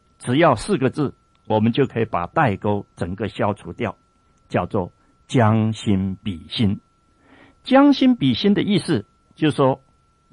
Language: Chinese